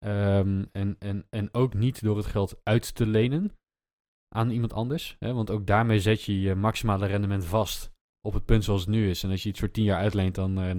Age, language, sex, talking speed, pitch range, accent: 20-39, Dutch, male, 235 wpm, 95-110 Hz, Dutch